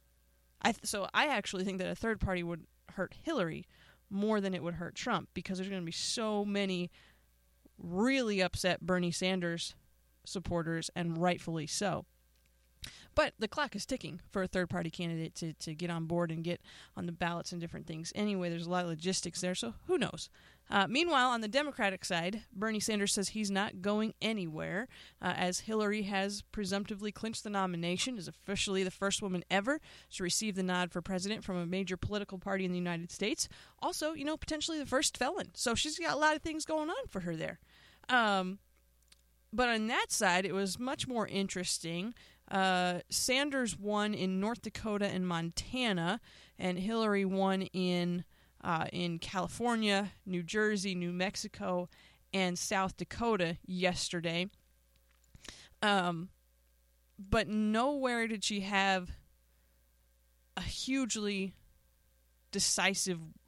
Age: 20-39